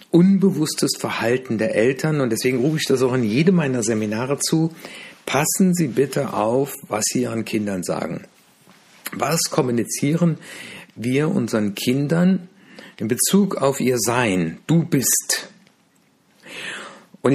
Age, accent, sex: 60-79, German, male